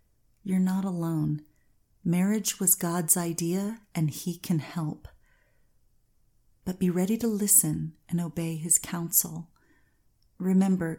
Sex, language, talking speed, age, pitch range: female, English, 115 wpm, 30-49, 160-190 Hz